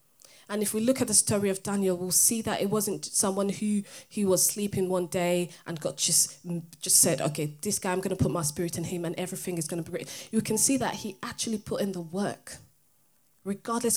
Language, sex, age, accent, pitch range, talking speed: English, female, 20-39, British, 170-200 Hz, 235 wpm